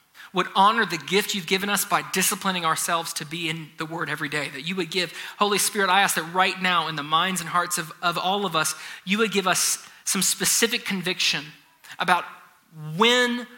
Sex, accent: male, American